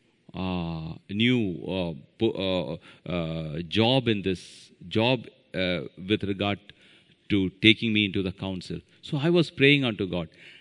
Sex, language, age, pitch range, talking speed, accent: male, English, 40-59, 95-125 Hz, 140 wpm, Indian